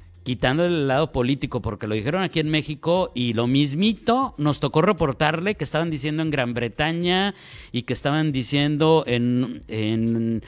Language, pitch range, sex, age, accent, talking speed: Spanish, 115-160 Hz, male, 50-69, Mexican, 155 wpm